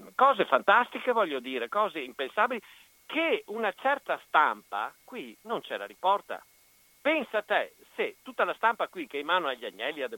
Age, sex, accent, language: 50-69, male, native, Italian